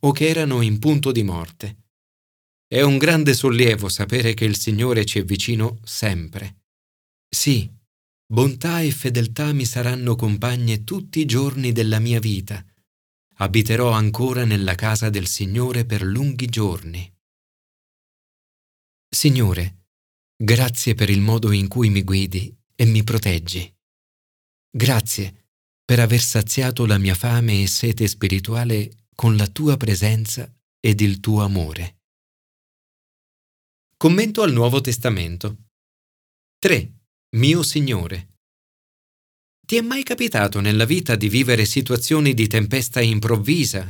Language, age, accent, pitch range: Italian, 40-59, native, 100-130 Hz